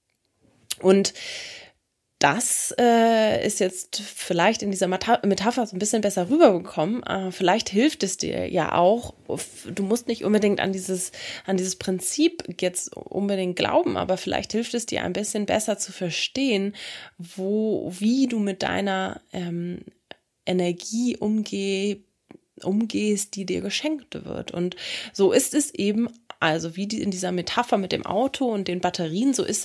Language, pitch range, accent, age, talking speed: English, 175-220 Hz, German, 20-39, 155 wpm